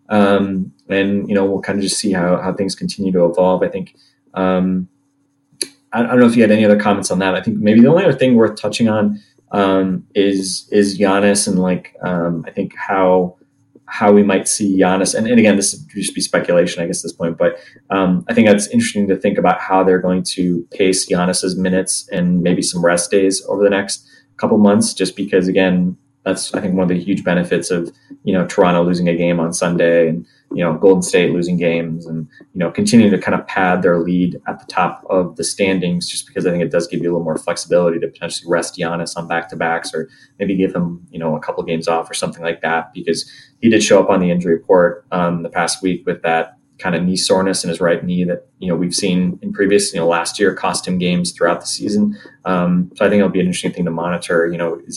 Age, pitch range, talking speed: 20-39, 85-100 Hz, 245 wpm